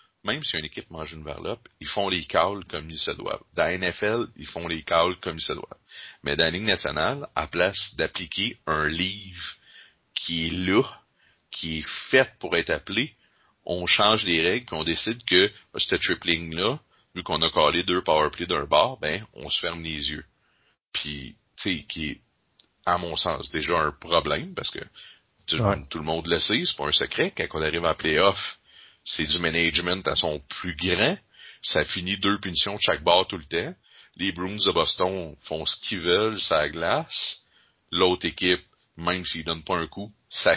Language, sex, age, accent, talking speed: French, male, 40-59, Canadian, 200 wpm